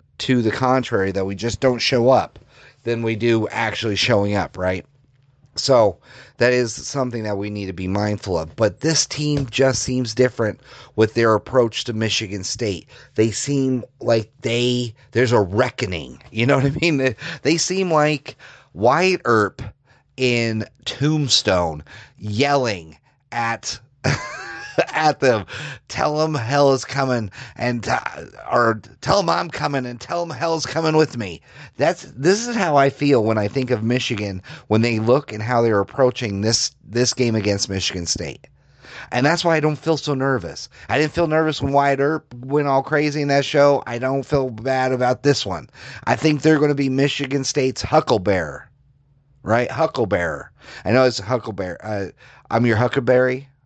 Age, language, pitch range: 30-49, English, 110-140 Hz